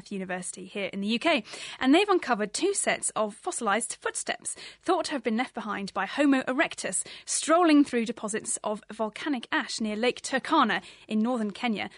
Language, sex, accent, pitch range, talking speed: English, female, British, 215-290 Hz, 170 wpm